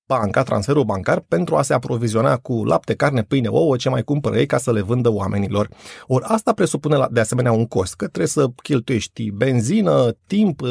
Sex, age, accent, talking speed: male, 30-49, native, 190 wpm